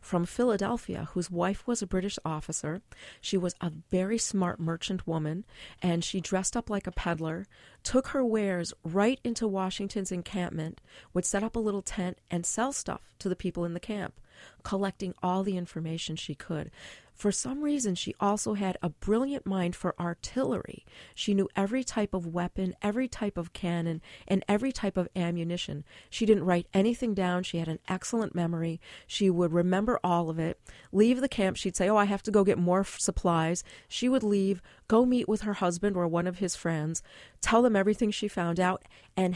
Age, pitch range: 40-59, 170-205 Hz